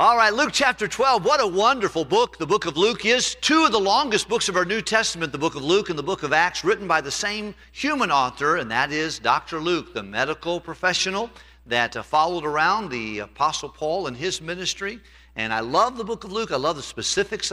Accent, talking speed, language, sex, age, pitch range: American, 225 wpm, English, male, 50-69, 110-160 Hz